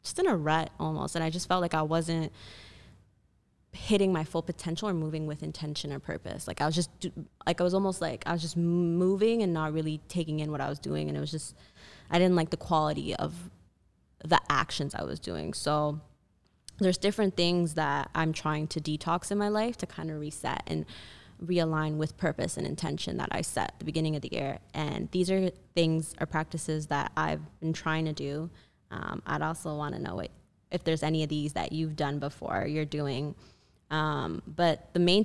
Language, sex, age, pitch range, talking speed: English, female, 20-39, 150-170 Hz, 210 wpm